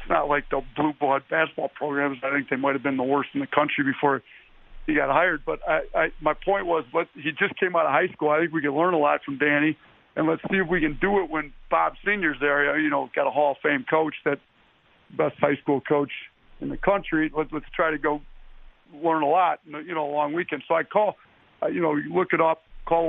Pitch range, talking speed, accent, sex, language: 150-170 Hz, 250 wpm, American, male, English